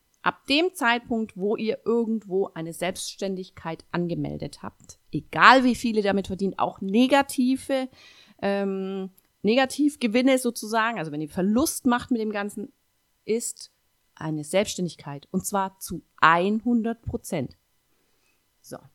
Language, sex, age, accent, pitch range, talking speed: German, female, 30-49, German, 170-225 Hz, 120 wpm